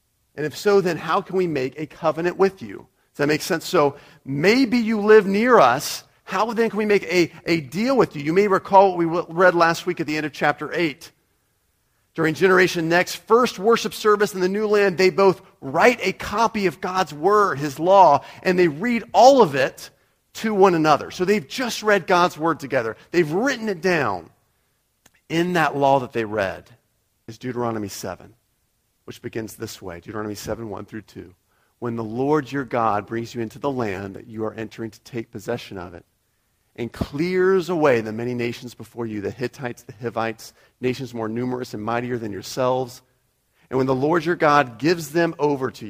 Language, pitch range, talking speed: English, 115-180 Hz, 200 wpm